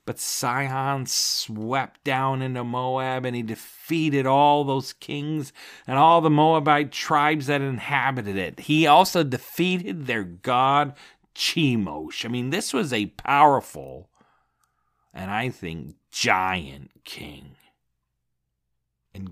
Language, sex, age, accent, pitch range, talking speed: English, male, 40-59, American, 105-150 Hz, 120 wpm